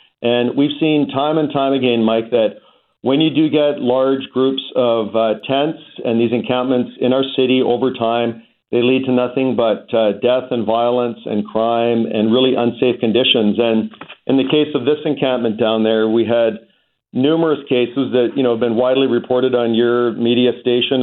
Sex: male